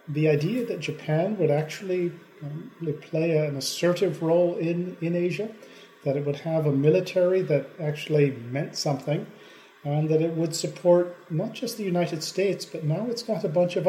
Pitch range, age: 145-175 Hz, 40-59